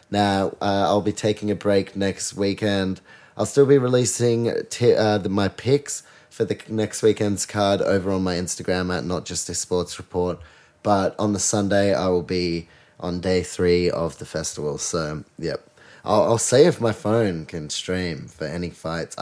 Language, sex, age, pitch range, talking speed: English, male, 20-39, 90-105 Hz, 175 wpm